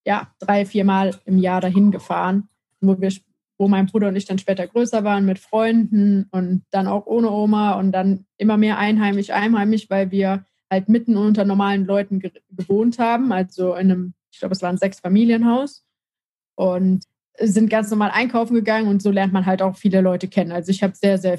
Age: 20-39